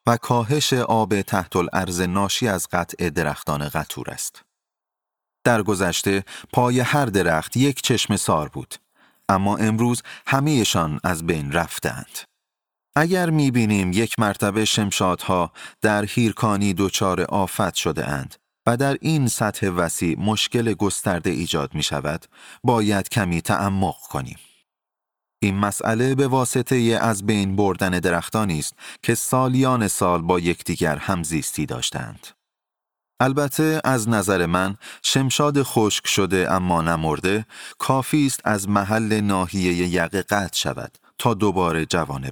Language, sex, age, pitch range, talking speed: Persian, male, 30-49, 95-120 Hz, 120 wpm